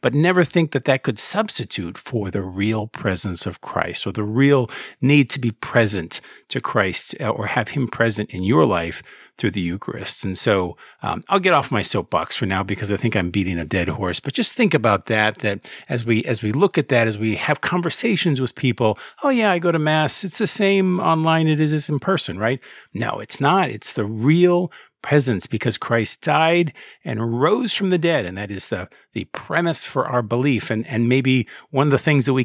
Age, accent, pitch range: 50-69, American, 105-150 Hz